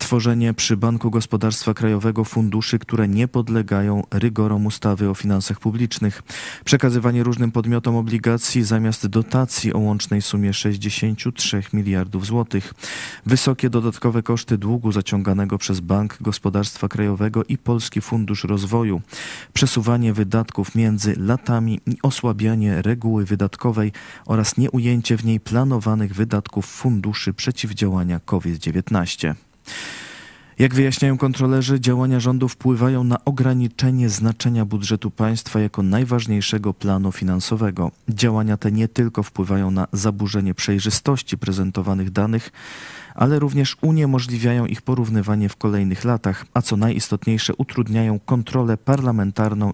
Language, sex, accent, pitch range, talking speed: Polish, male, native, 105-120 Hz, 115 wpm